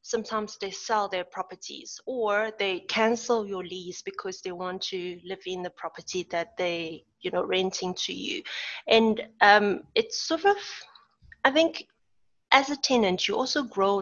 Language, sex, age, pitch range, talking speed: English, female, 30-49, 190-240 Hz, 165 wpm